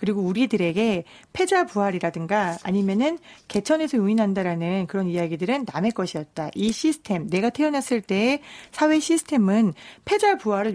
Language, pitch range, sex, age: Korean, 190-275 Hz, female, 40-59